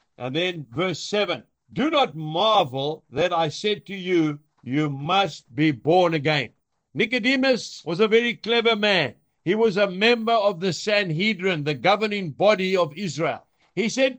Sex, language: male, English